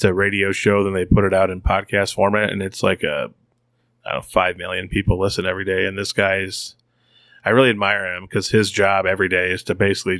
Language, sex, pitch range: English, male, 95-115 Hz